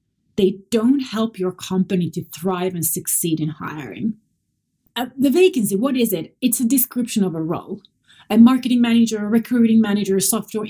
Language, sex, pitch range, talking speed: English, female, 185-235 Hz, 170 wpm